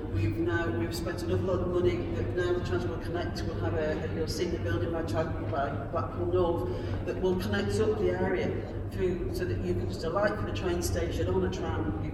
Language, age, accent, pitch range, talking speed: English, 40-59, British, 90-105 Hz, 220 wpm